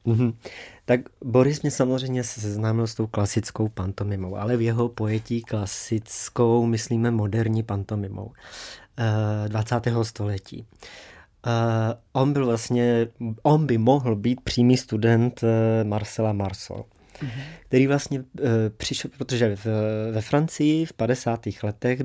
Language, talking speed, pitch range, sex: Czech, 100 wpm, 110-130 Hz, male